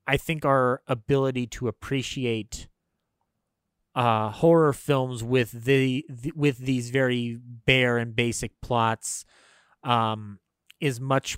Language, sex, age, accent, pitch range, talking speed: English, male, 30-49, American, 110-135 Hz, 115 wpm